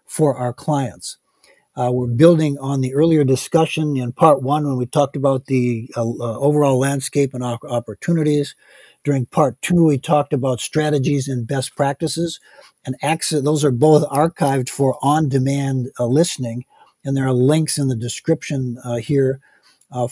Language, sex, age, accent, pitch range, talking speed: English, male, 50-69, American, 125-150 Hz, 160 wpm